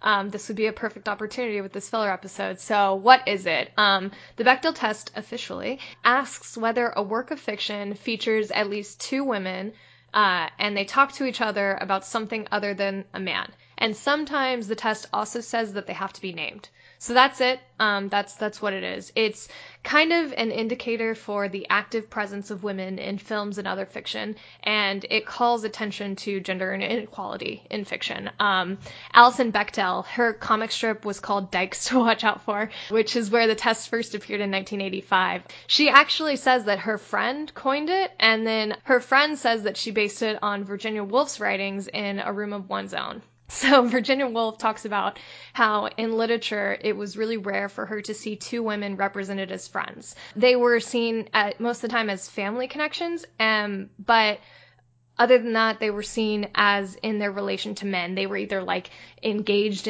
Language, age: English, 10-29